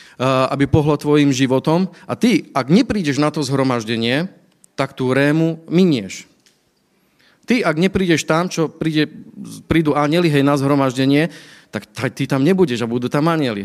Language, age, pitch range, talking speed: Slovak, 40-59, 135-165 Hz, 155 wpm